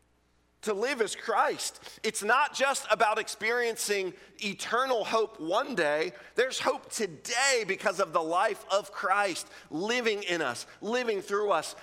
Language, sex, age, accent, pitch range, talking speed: English, male, 40-59, American, 125-200 Hz, 140 wpm